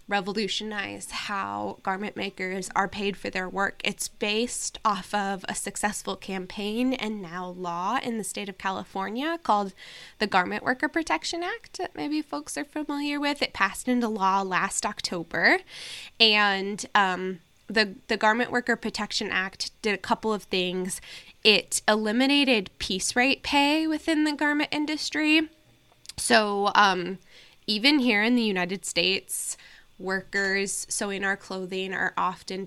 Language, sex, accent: English, female, American